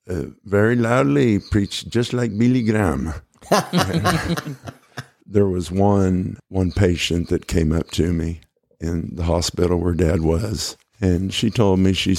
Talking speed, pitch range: 145 wpm, 80-95 Hz